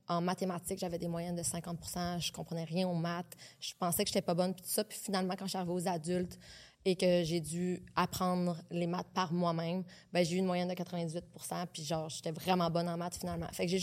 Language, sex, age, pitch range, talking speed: French, female, 20-39, 175-200 Hz, 250 wpm